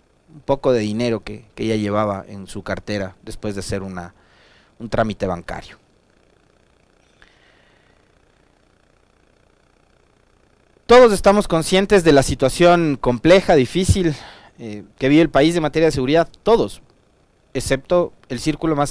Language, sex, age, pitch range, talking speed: Spanish, male, 40-59, 110-165 Hz, 125 wpm